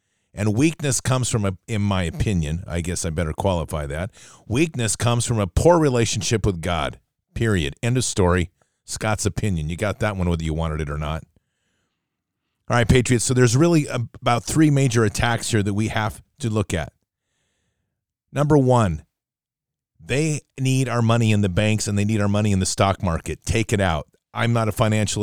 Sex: male